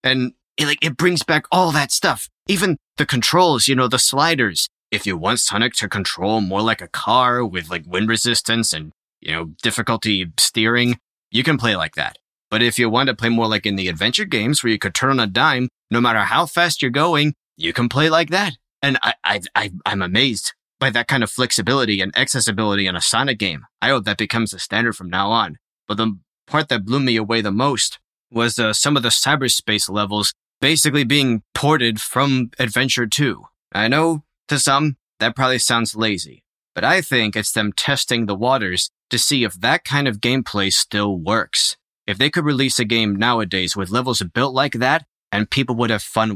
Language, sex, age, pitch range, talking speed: English, male, 30-49, 110-140 Hz, 205 wpm